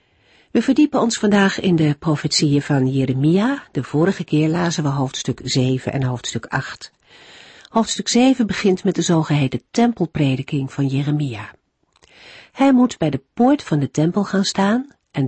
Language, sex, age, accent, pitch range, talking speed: Dutch, female, 50-69, Dutch, 135-190 Hz, 155 wpm